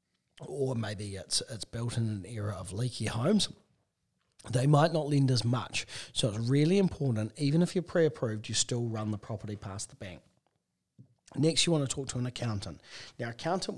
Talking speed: 185 wpm